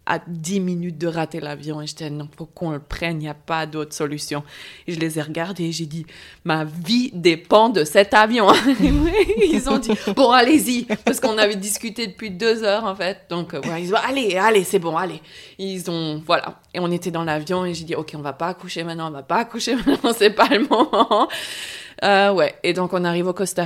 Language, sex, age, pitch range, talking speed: French, female, 20-39, 150-195 Hz, 240 wpm